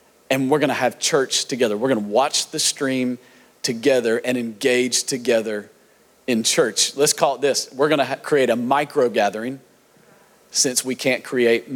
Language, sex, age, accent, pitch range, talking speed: English, male, 40-59, American, 155-235 Hz, 160 wpm